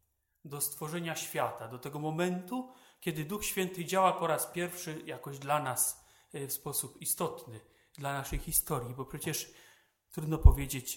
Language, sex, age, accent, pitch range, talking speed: Polish, male, 40-59, native, 130-160 Hz, 140 wpm